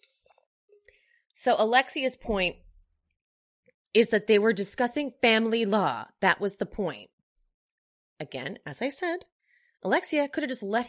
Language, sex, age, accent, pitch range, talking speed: English, female, 30-49, American, 170-255 Hz, 125 wpm